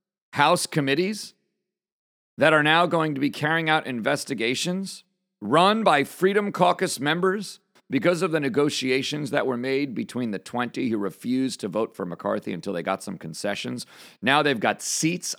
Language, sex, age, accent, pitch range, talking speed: English, male, 40-59, American, 110-180 Hz, 160 wpm